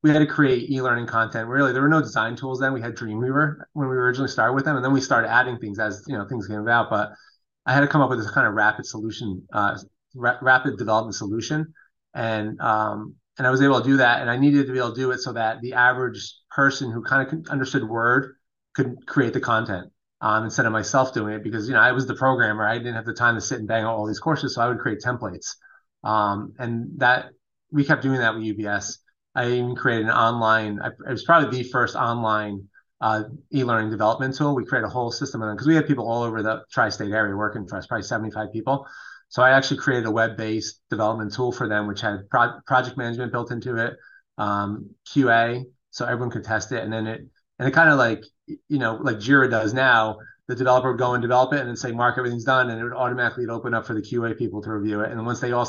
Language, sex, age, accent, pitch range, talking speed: English, male, 30-49, American, 110-130 Hz, 245 wpm